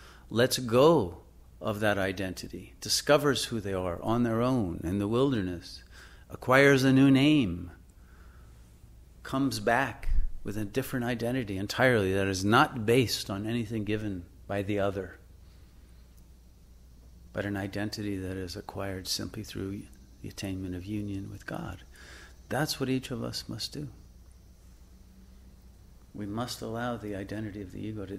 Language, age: English, 50-69